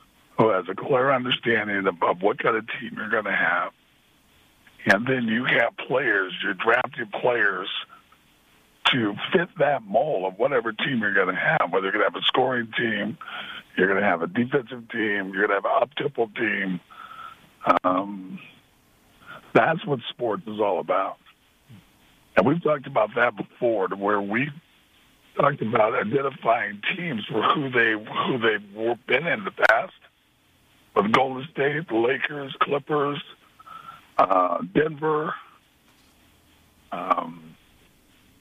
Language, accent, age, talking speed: English, American, 50-69, 145 wpm